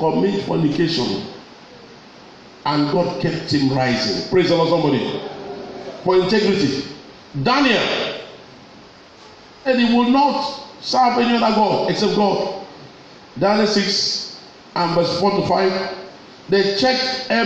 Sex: male